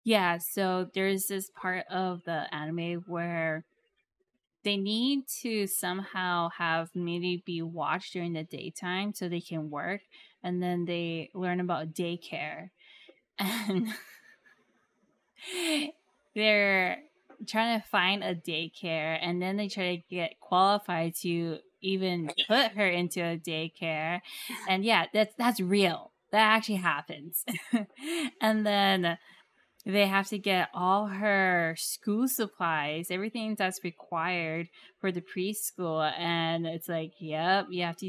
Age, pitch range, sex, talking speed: 10-29, 170-210 Hz, female, 130 wpm